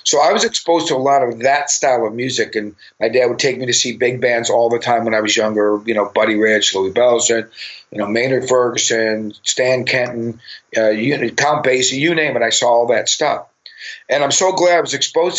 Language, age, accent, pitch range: English, 50-69, American, 115-145 Hz